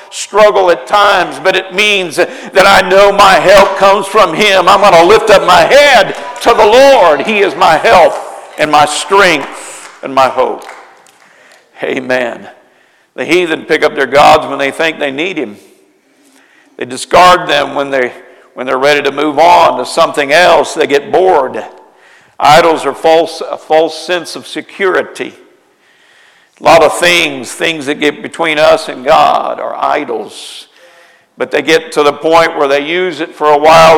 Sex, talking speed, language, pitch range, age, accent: male, 175 wpm, English, 145-195 Hz, 50-69, American